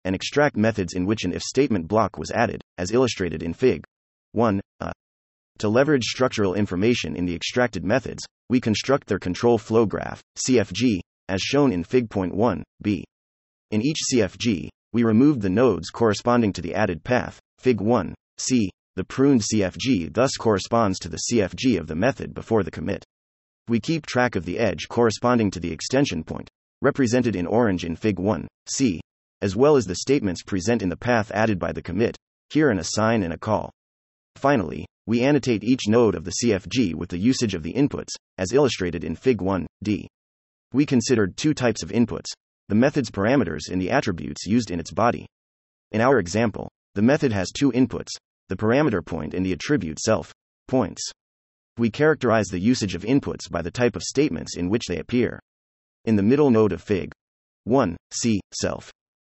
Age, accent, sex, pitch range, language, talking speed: 30-49, American, male, 85-120 Hz, English, 185 wpm